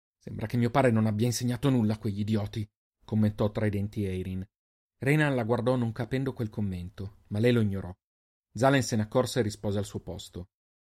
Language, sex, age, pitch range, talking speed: Italian, male, 30-49, 100-120 Hz, 200 wpm